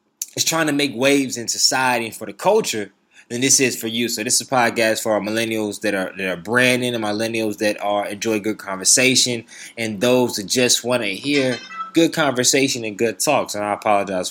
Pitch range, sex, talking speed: 105-125 Hz, male, 210 wpm